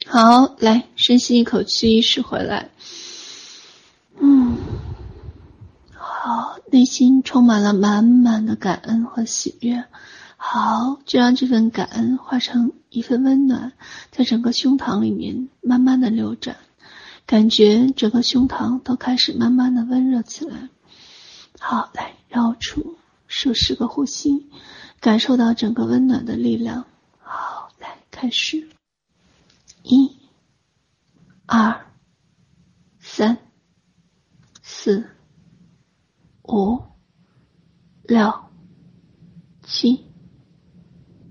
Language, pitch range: Chinese, 220-255 Hz